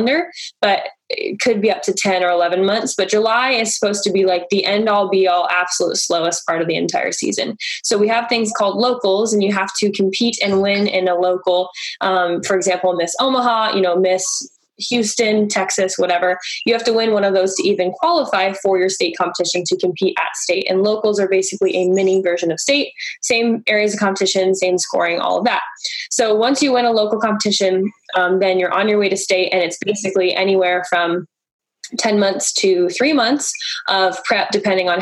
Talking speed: 205 wpm